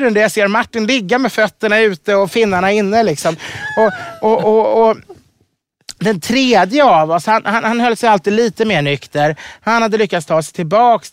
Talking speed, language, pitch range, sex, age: 180 wpm, English, 170-225 Hz, male, 30-49